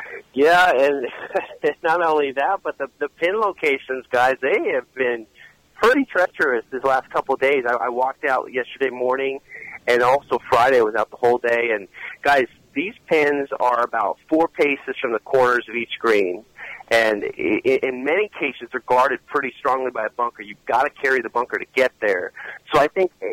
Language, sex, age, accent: English, male, 40-59, American